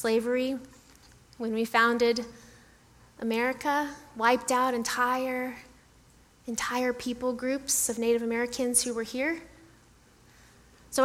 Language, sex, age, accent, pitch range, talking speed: English, female, 30-49, American, 220-265 Hz, 100 wpm